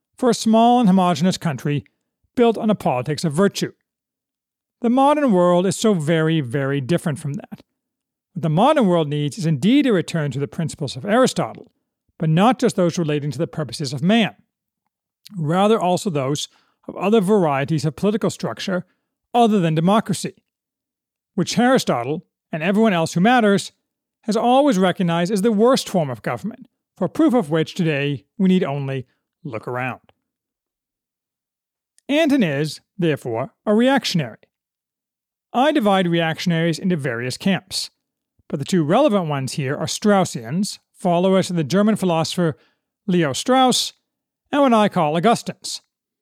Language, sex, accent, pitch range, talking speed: English, male, American, 160-215 Hz, 150 wpm